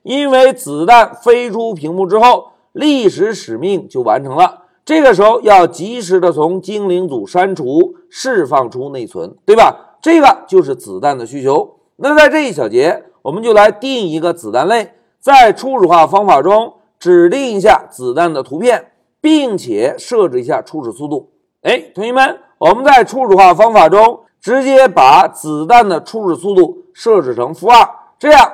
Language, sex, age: Chinese, male, 50-69